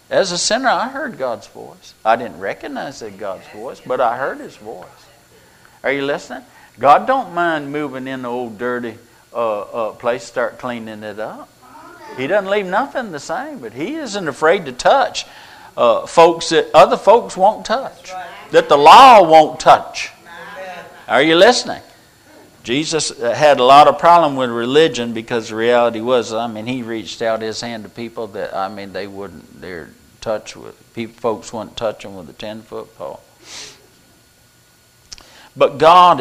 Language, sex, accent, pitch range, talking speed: English, male, American, 110-155 Hz, 170 wpm